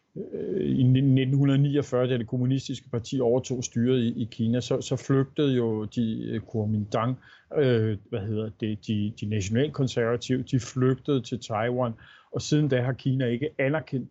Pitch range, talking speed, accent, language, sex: 120-140 Hz, 115 wpm, native, Danish, male